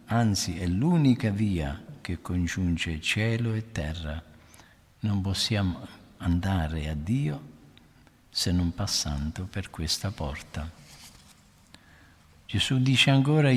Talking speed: 100 wpm